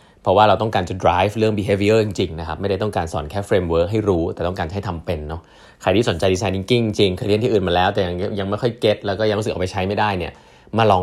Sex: male